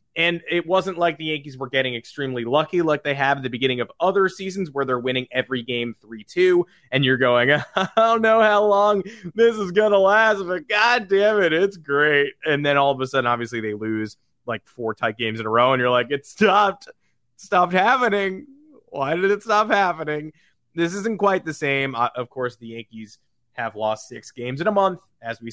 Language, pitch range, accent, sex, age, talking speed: English, 125-175 Hz, American, male, 20-39, 215 wpm